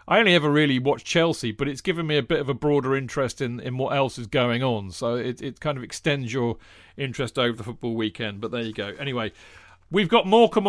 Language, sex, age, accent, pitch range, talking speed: English, male, 40-59, British, 125-160 Hz, 240 wpm